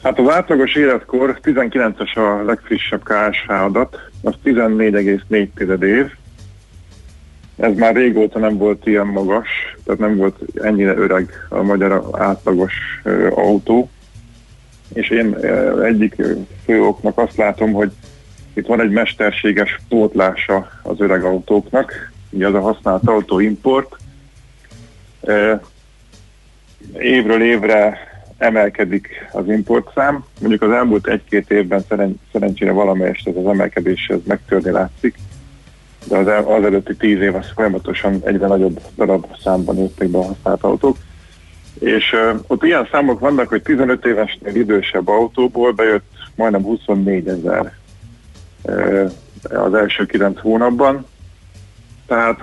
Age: 30-49